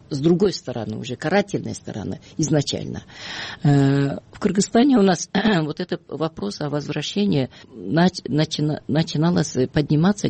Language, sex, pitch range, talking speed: Russian, female, 125-155 Hz, 105 wpm